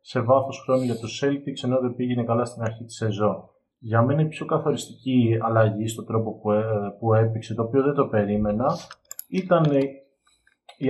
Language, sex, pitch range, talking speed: Greek, male, 110-130 Hz, 170 wpm